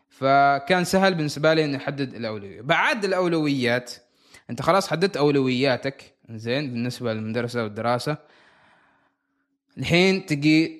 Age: 20-39